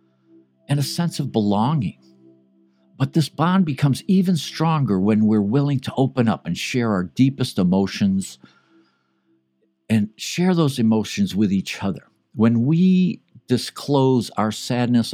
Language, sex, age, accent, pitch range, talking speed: English, male, 60-79, American, 90-130 Hz, 135 wpm